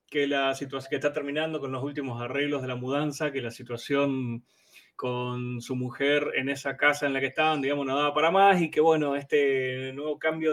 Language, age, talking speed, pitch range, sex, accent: Spanish, 20-39, 210 wpm, 135-165 Hz, male, Argentinian